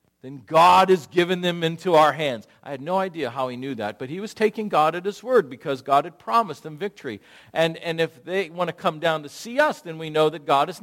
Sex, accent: male, American